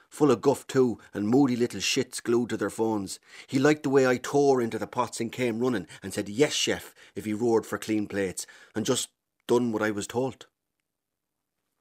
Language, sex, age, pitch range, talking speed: English, male, 30-49, 105-125 Hz, 210 wpm